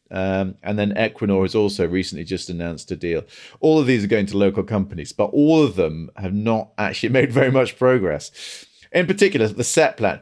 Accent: British